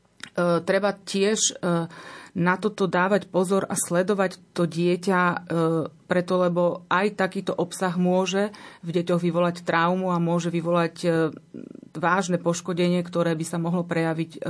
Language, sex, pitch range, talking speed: Slovak, female, 170-185 Hz, 125 wpm